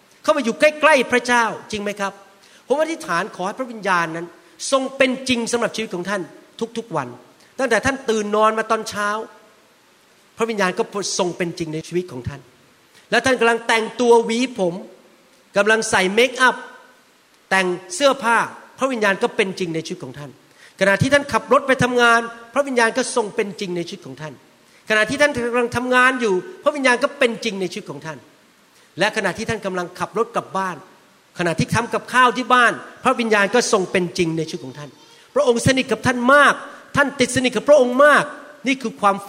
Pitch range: 180-255 Hz